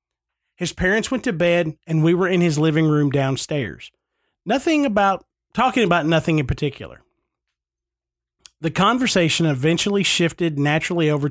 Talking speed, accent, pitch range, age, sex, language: 140 wpm, American, 135-185 Hz, 40-59, male, English